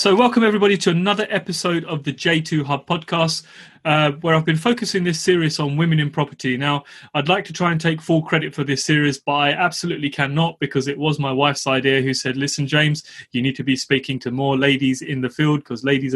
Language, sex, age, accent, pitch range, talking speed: English, male, 30-49, British, 140-170 Hz, 225 wpm